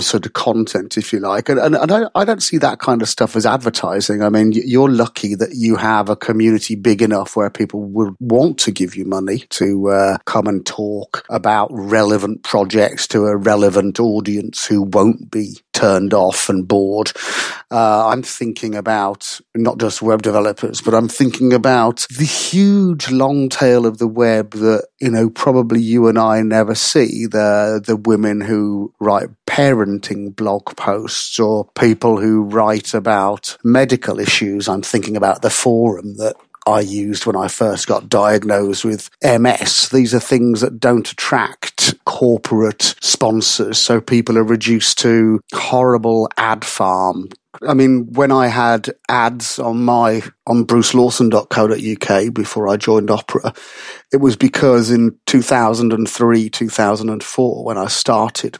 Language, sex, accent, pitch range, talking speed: Russian, male, British, 105-120 Hz, 165 wpm